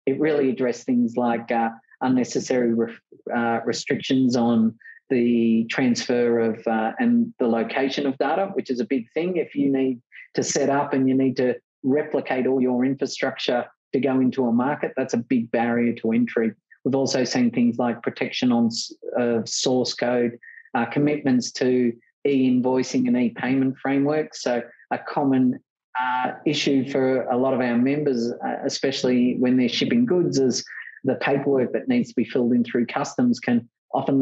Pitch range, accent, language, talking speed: 120-140 Hz, Australian, English, 170 wpm